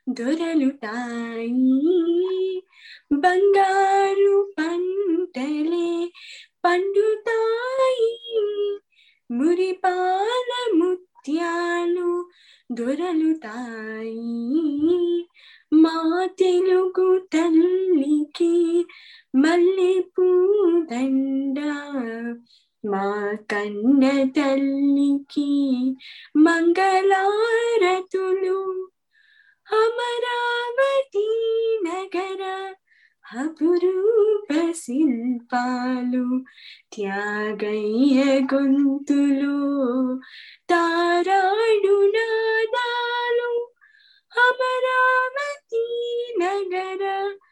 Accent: native